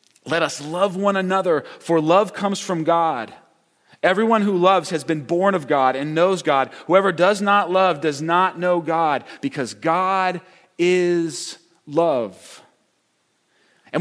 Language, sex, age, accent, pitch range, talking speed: English, male, 30-49, American, 160-200 Hz, 145 wpm